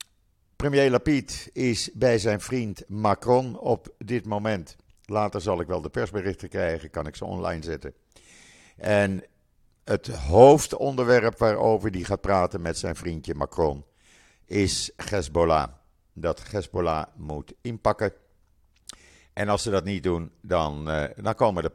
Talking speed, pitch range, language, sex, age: 140 wpm, 80-105 Hz, Dutch, male, 50-69